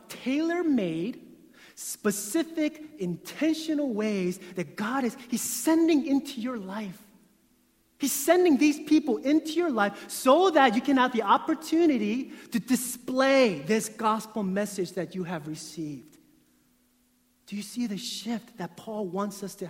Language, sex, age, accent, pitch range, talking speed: English, male, 30-49, American, 185-260 Hz, 135 wpm